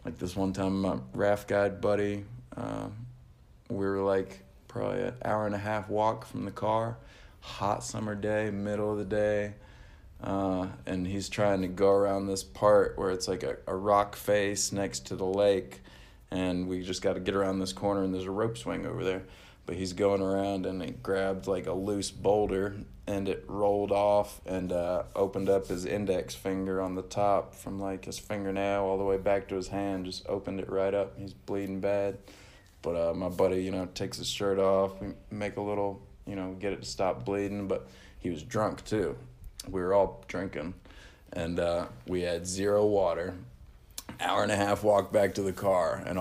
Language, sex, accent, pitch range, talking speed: English, male, American, 95-100 Hz, 200 wpm